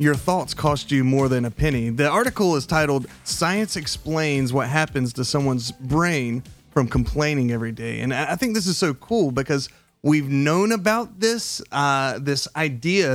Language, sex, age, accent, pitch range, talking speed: English, male, 30-49, American, 135-180 Hz, 175 wpm